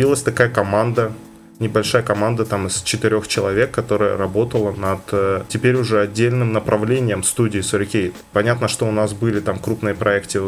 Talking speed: 150 wpm